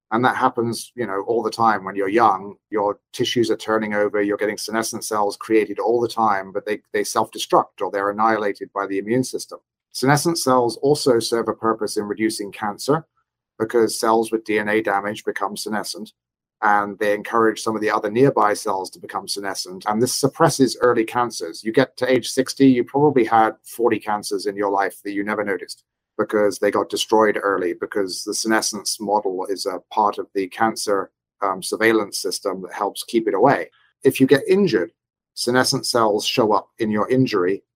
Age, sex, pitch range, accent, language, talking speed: 30-49, male, 105-125 Hz, British, English, 190 wpm